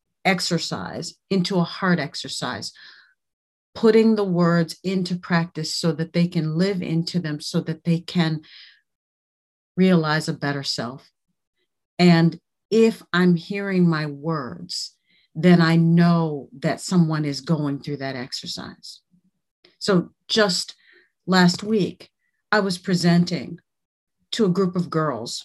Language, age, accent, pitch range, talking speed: English, 50-69, American, 160-185 Hz, 125 wpm